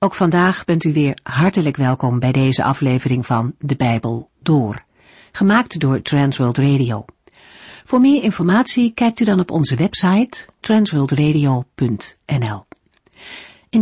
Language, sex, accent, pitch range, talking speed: Dutch, female, Dutch, 135-195 Hz, 125 wpm